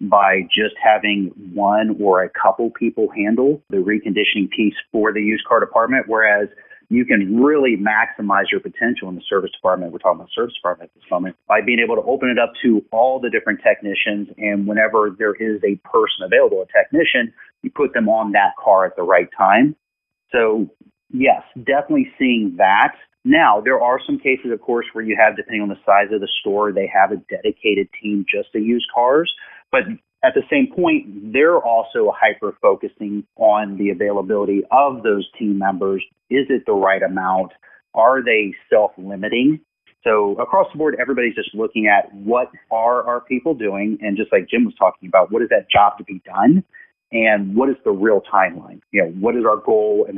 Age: 30-49